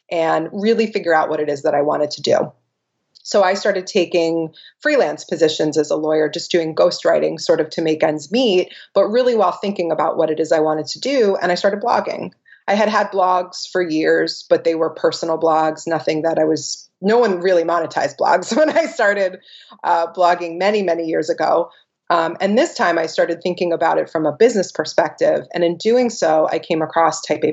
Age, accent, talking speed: 30-49, American, 210 wpm